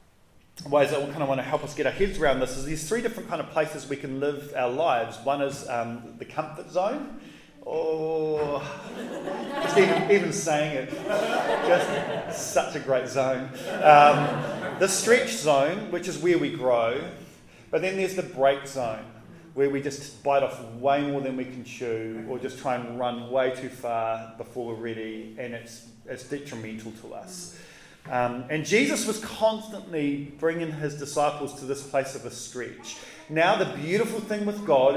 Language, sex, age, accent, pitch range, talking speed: English, male, 30-49, Australian, 130-170 Hz, 180 wpm